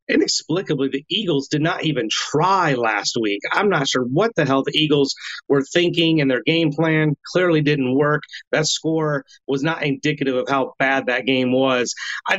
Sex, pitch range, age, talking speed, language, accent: male, 135-165 Hz, 30-49, 185 wpm, English, American